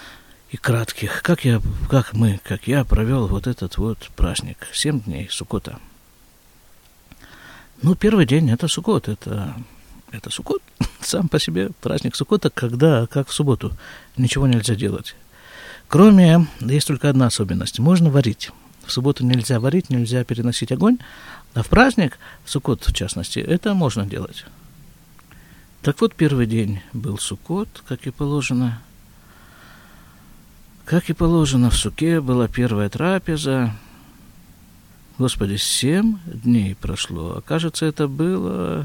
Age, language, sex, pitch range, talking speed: 50-69, Russian, male, 110-145 Hz, 130 wpm